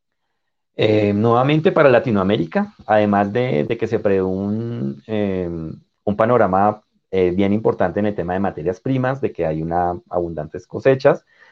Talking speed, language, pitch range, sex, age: 140 wpm, Spanish, 85-105 Hz, male, 30-49